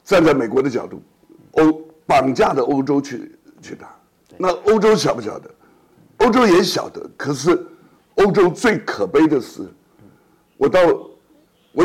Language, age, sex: Chinese, 60-79, male